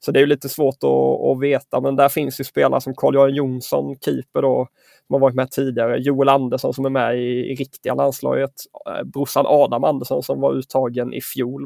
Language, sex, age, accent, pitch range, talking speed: English, male, 20-39, Swedish, 125-140 Hz, 210 wpm